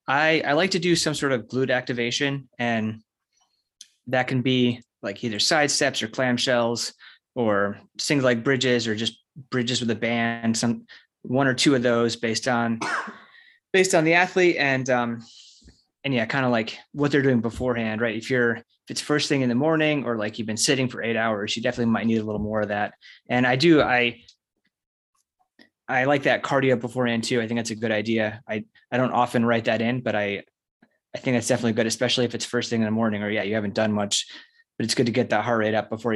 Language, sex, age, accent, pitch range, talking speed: English, male, 20-39, American, 110-135 Hz, 225 wpm